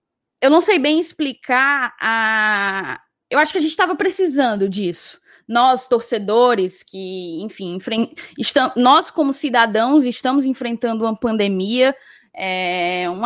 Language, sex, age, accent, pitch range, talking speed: Portuguese, female, 10-29, Brazilian, 205-260 Hz, 120 wpm